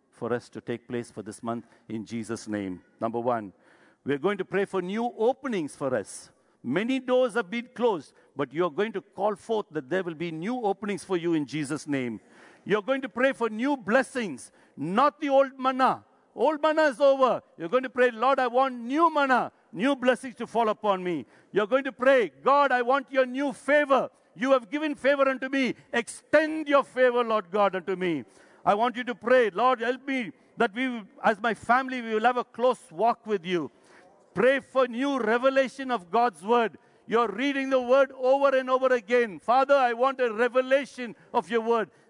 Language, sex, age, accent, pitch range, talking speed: English, male, 60-79, Indian, 210-270 Hz, 200 wpm